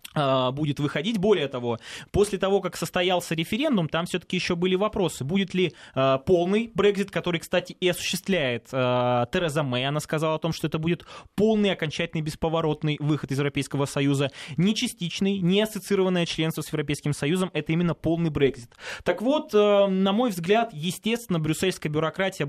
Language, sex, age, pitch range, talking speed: Russian, male, 20-39, 145-180 Hz, 165 wpm